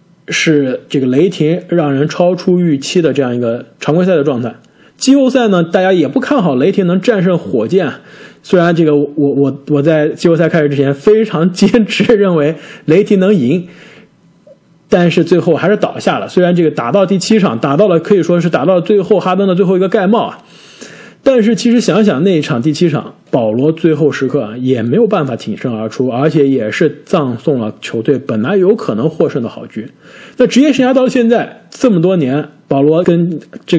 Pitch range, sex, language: 145-200 Hz, male, Chinese